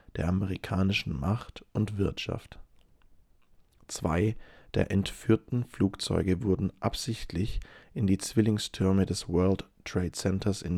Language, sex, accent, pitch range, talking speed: English, male, German, 90-105 Hz, 105 wpm